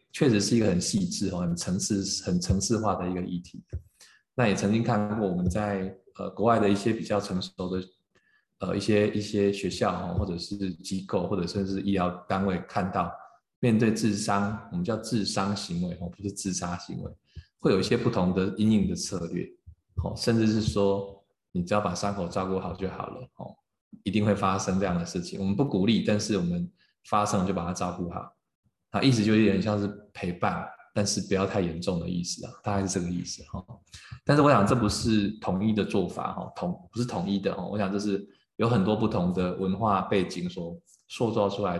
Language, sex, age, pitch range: Chinese, male, 20-39, 90-105 Hz